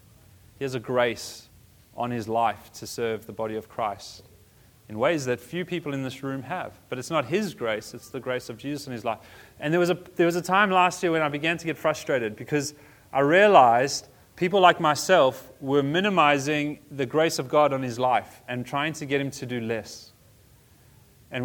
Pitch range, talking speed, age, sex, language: 125-175 Hz, 210 wpm, 30-49, male, English